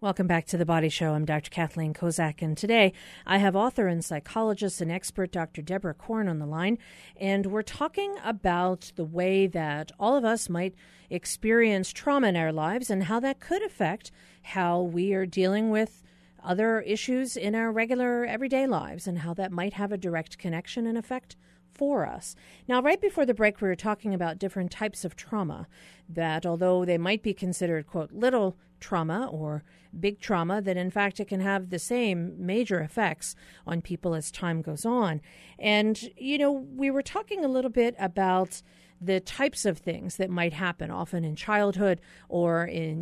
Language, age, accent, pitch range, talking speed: English, 40-59, American, 170-220 Hz, 185 wpm